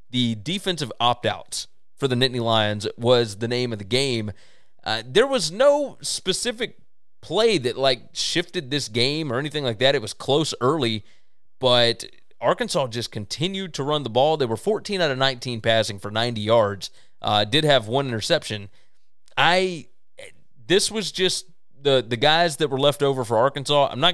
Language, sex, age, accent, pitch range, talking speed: English, male, 30-49, American, 115-150 Hz, 175 wpm